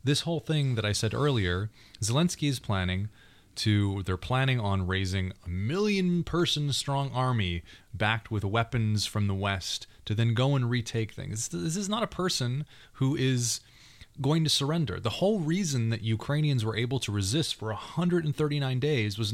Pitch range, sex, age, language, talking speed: 110-155 Hz, male, 30-49, English, 170 wpm